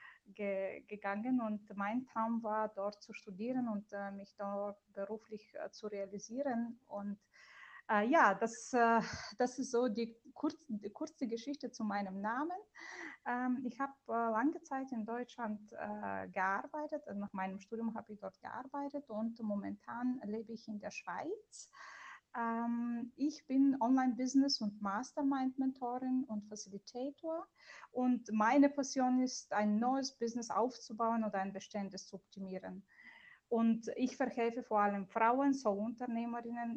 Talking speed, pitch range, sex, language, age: 140 wpm, 205-250 Hz, female, German, 20-39